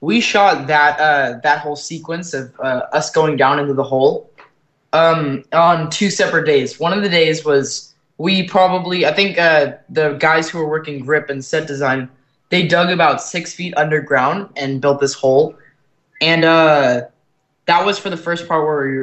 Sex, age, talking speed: male, 20-39, 185 wpm